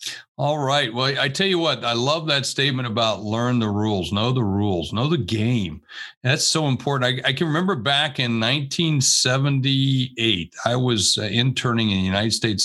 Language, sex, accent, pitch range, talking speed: English, male, American, 110-145 Hz, 185 wpm